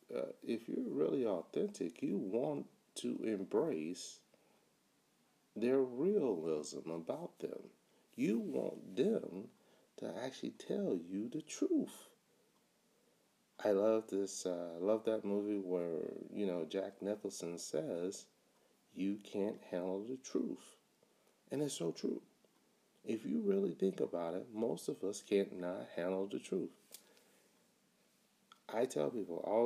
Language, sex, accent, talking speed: English, male, American, 125 wpm